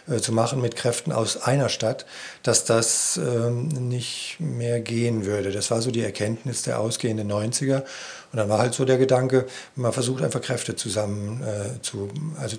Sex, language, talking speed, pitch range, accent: male, German, 175 wpm, 110-130 Hz, German